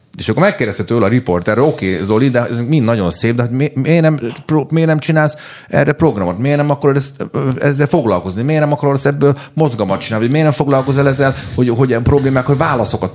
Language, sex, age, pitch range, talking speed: Hungarian, male, 40-59, 95-140 Hz, 200 wpm